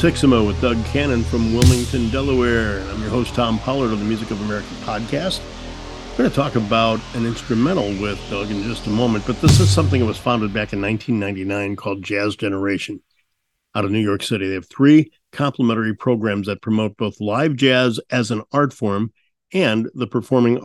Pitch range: 105-125 Hz